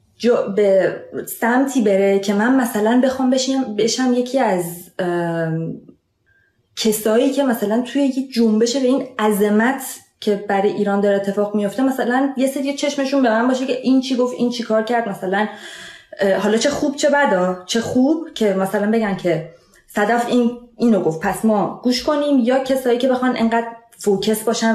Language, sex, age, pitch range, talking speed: Persian, female, 20-39, 195-255 Hz, 170 wpm